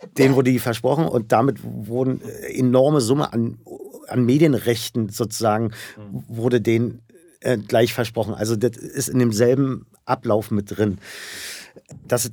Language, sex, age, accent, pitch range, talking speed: German, male, 50-69, German, 115-140 Hz, 130 wpm